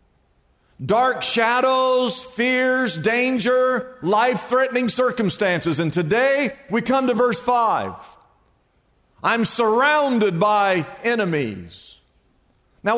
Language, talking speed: English, 85 wpm